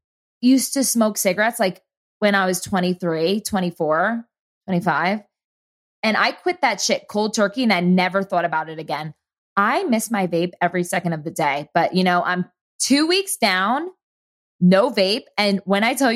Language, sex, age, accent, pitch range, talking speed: English, female, 20-39, American, 180-245 Hz, 175 wpm